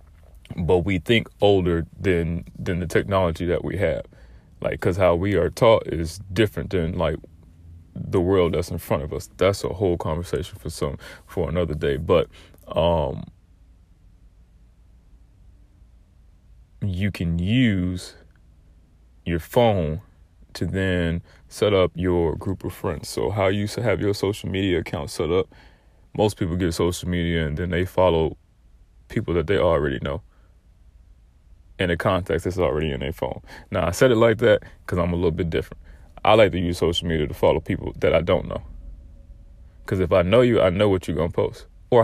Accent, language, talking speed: American, English, 175 wpm